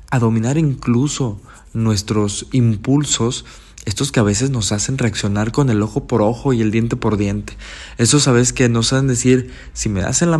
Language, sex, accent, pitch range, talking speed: Spanish, male, Mexican, 105-135 Hz, 190 wpm